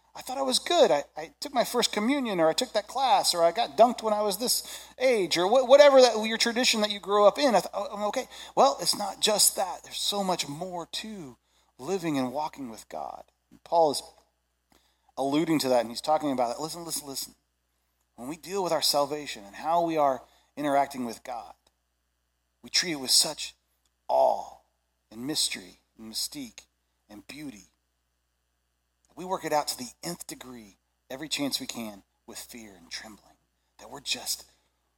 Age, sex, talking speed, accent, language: 40-59, male, 185 wpm, American, English